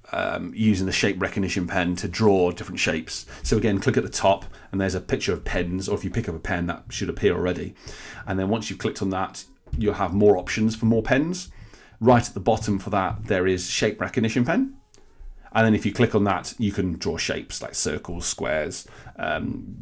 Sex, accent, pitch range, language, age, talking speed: male, British, 95-115 Hz, English, 40-59, 220 wpm